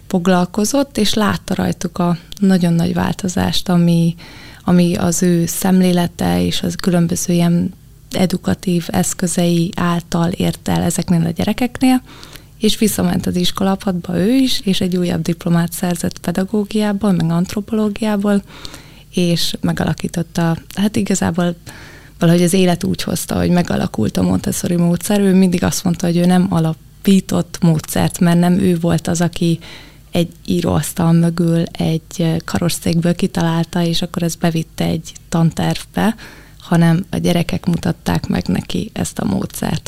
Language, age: Hungarian, 20-39